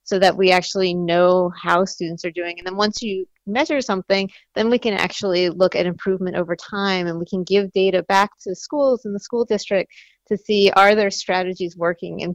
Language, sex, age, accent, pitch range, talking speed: English, female, 30-49, American, 185-220 Hz, 210 wpm